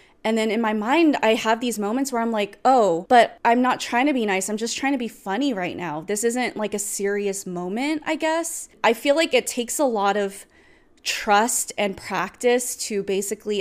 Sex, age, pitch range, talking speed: female, 20-39, 195-235 Hz, 215 wpm